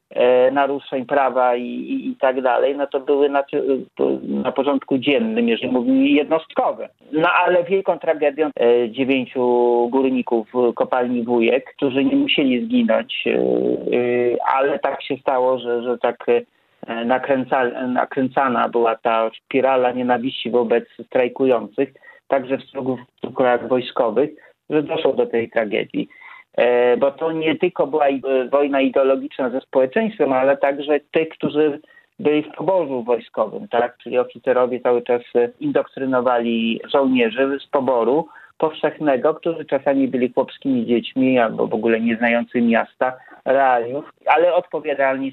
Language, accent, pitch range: Polish, native, 120-150 Hz